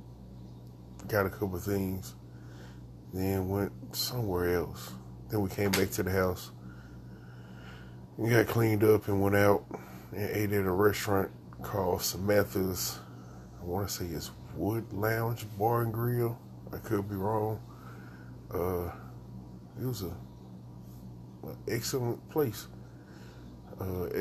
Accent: American